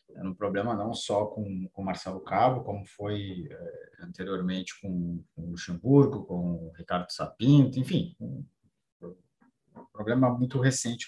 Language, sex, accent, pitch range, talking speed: Portuguese, male, Brazilian, 105-135 Hz, 140 wpm